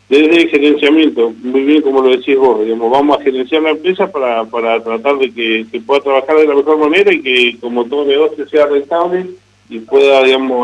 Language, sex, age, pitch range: Spanish, male, 40-59, 125-150 Hz